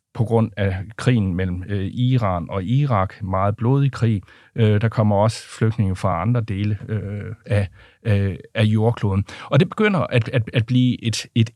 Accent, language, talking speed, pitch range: native, Danish, 155 wpm, 100-120 Hz